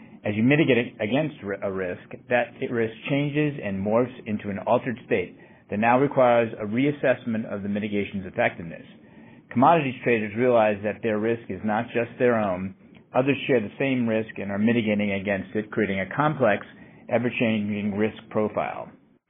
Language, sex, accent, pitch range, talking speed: English, male, American, 105-125 Hz, 160 wpm